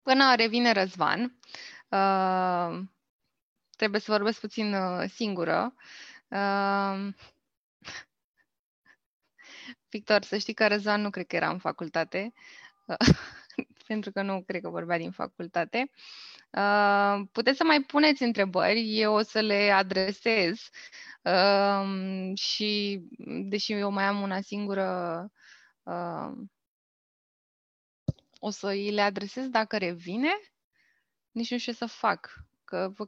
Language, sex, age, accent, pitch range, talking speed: Romanian, female, 20-39, native, 195-235 Hz, 105 wpm